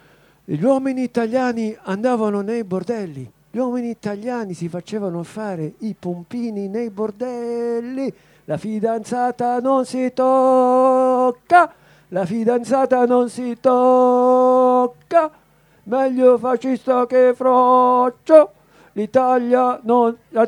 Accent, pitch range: native, 190-255 Hz